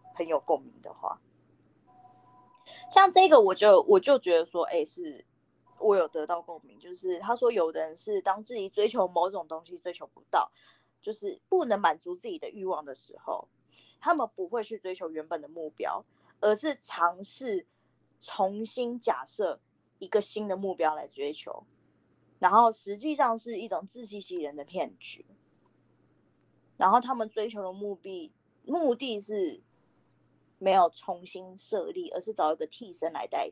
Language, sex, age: Chinese, female, 20-39